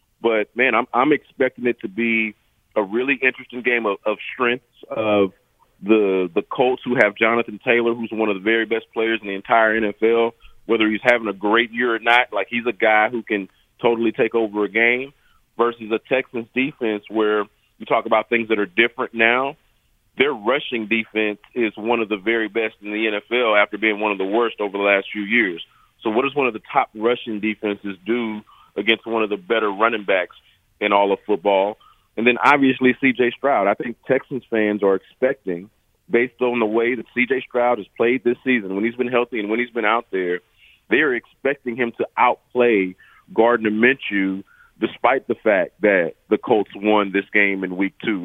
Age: 30-49